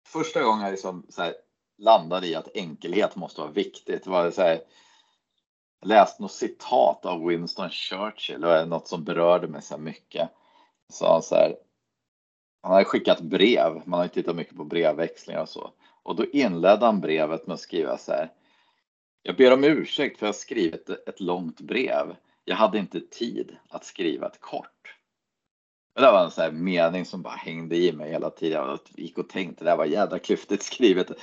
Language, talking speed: English, 195 wpm